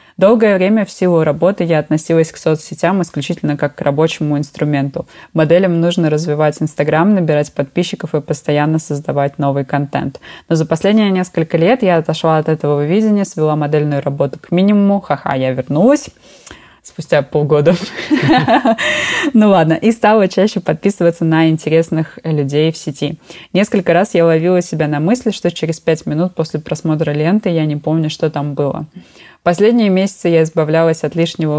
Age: 20-39